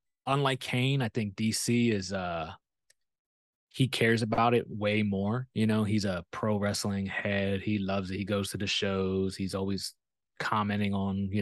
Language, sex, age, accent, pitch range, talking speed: English, male, 20-39, American, 100-125 Hz, 175 wpm